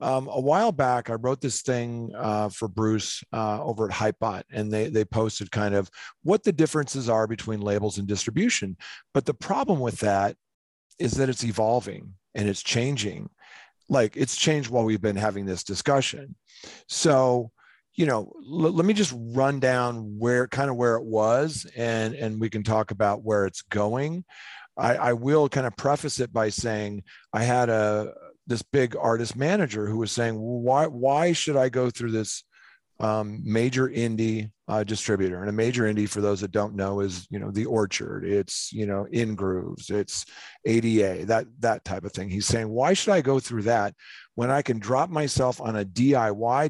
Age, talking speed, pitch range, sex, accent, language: 40-59, 190 wpm, 105-125 Hz, male, American, English